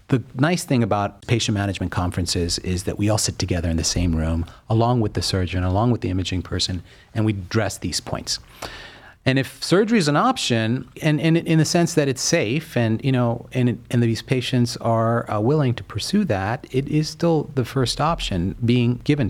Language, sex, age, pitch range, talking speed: English, male, 40-59, 100-135 Hz, 210 wpm